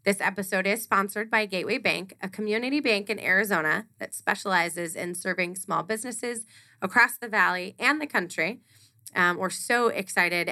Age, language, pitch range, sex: 20-39, English, 165-210 Hz, female